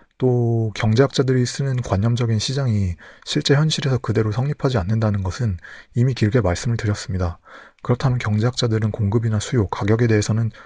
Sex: male